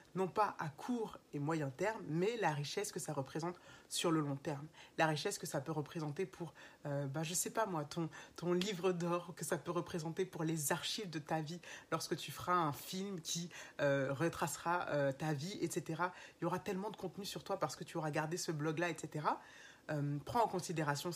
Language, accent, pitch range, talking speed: French, French, 155-185 Hz, 220 wpm